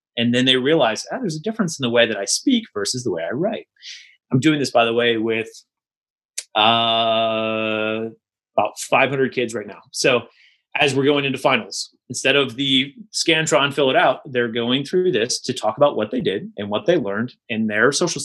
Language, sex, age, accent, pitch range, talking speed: English, male, 30-49, American, 120-155 Hz, 205 wpm